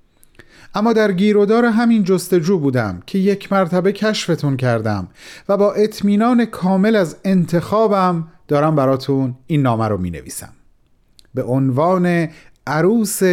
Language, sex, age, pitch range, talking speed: Persian, male, 40-59, 130-185 Hz, 115 wpm